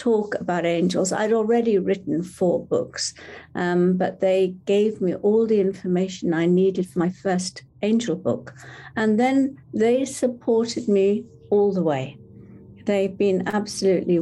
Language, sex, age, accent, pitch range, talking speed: English, female, 60-79, British, 170-225 Hz, 145 wpm